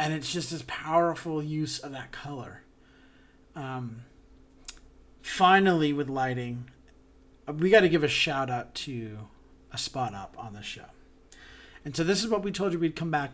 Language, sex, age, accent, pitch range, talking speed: English, male, 40-59, American, 125-170 Hz, 170 wpm